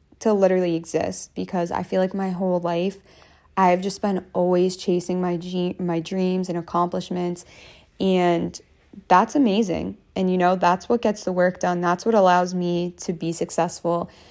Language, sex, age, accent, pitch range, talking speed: English, female, 20-39, American, 165-190 Hz, 170 wpm